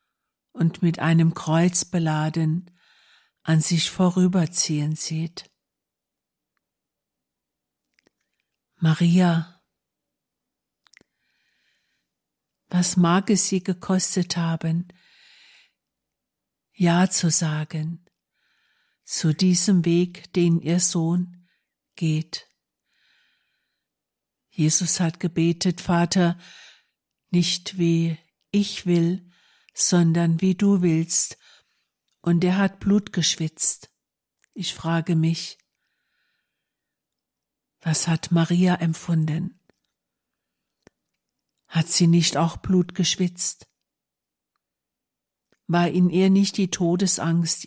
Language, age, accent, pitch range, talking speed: German, 60-79, German, 165-190 Hz, 80 wpm